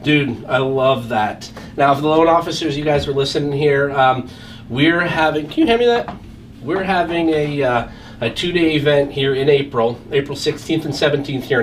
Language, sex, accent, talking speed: English, male, American, 190 wpm